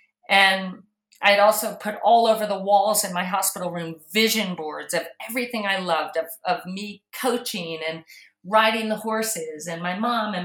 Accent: American